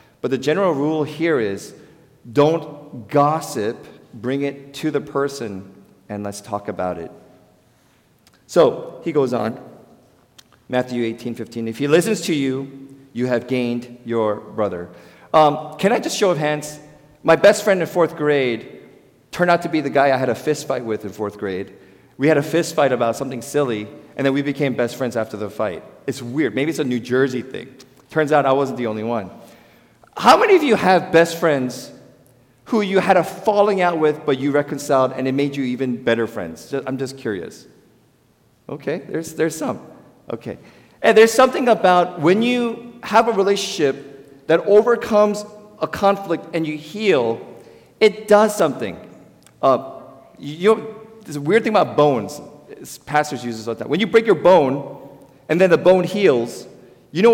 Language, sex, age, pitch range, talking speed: English, male, 40-59, 125-175 Hz, 180 wpm